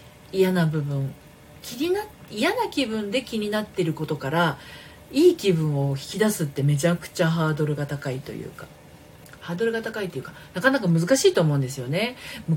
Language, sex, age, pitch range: Japanese, female, 40-59, 150-220 Hz